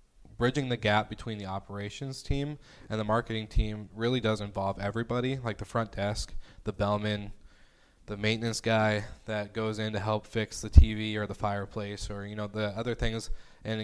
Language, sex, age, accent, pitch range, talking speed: English, male, 20-39, American, 100-110 Hz, 180 wpm